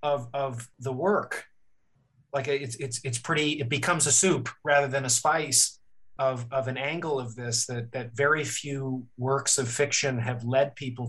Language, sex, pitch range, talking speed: English, male, 125-150 Hz, 180 wpm